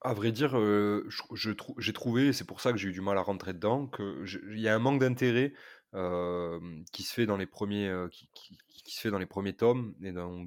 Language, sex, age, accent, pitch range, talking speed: French, male, 20-39, French, 95-125 Hz, 200 wpm